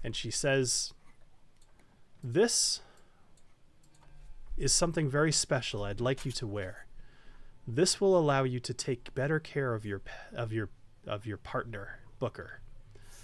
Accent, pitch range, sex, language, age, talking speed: American, 110-150 Hz, male, English, 30-49, 130 wpm